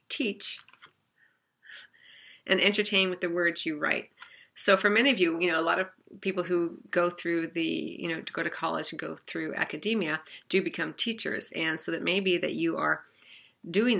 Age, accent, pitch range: 40-59, American, 165-200 Hz